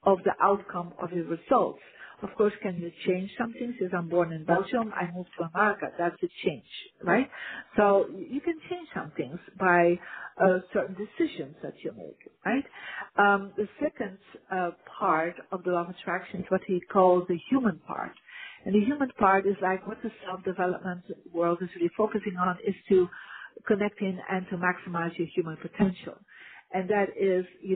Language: English